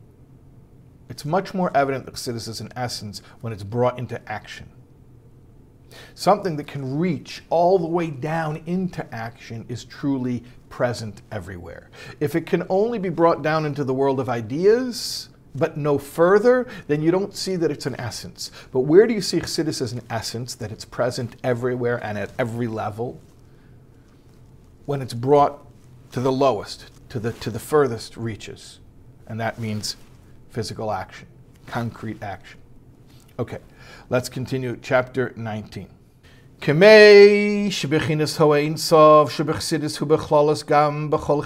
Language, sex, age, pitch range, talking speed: English, male, 50-69, 120-155 Hz, 130 wpm